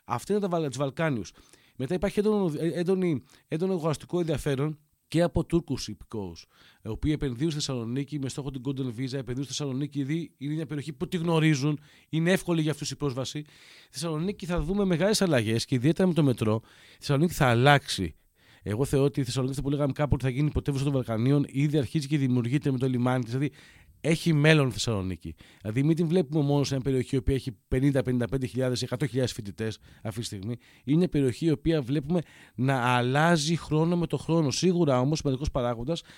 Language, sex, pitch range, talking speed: Greek, male, 130-160 Hz, 185 wpm